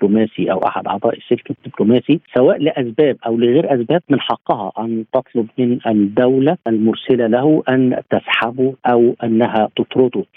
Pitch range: 115-130 Hz